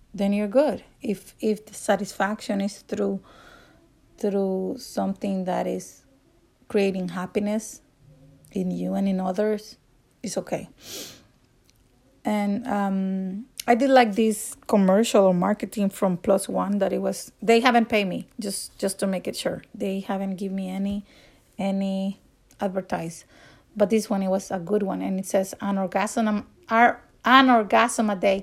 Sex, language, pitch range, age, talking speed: female, English, 195-220 Hz, 30-49, 150 wpm